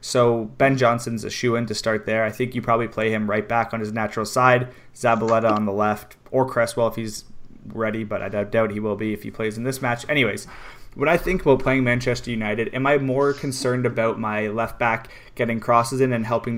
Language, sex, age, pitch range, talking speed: English, male, 20-39, 115-130 Hz, 230 wpm